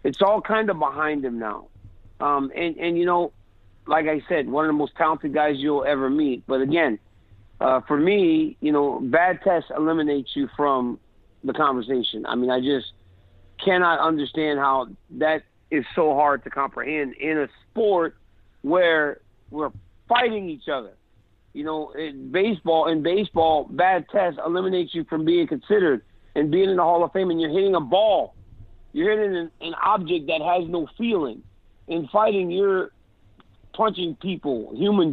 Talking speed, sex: 165 wpm, male